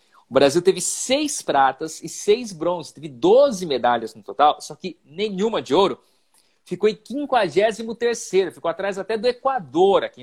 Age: 40-59